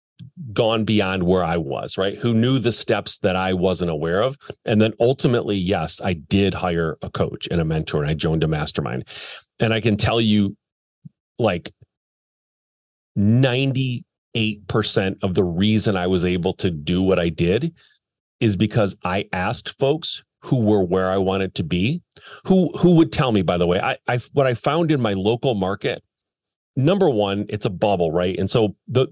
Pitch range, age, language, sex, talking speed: 95-125 Hz, 40-59, English, male, 185 wpm